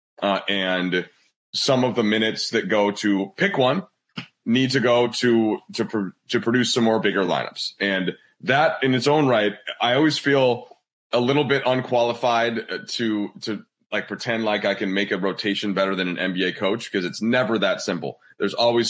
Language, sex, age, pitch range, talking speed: English, male, 30-49, 95-120 Hz, 185 wpm